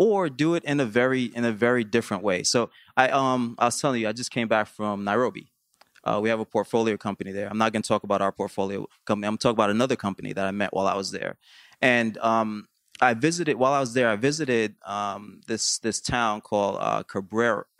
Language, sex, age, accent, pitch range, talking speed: English, male, 20-39, American, 105-120 Hz, 235 wpm